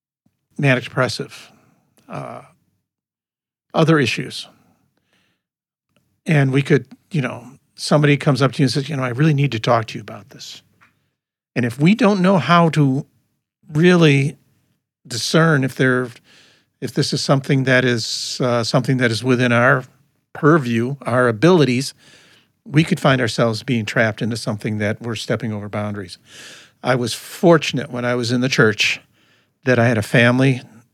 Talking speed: 155 wpm